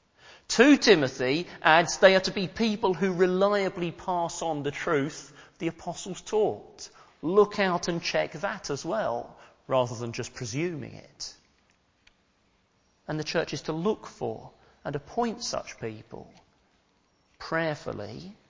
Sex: male